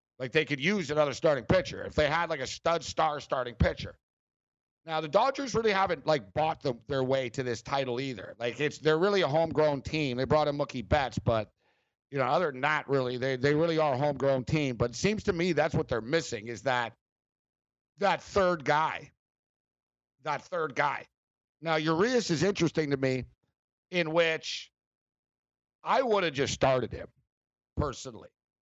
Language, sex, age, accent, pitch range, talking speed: English, male, 60-79, American, 130-165 Hz, 185 wpm